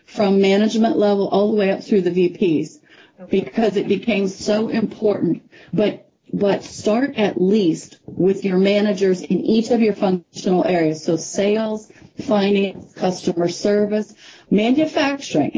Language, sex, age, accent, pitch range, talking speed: English, female, 40-59, American, 190-230 Hz, 135 wpm